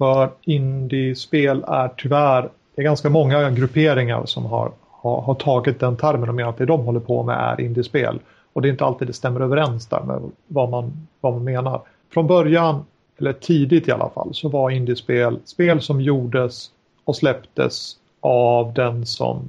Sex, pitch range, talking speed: male, 125-145 Hz, 180 wpm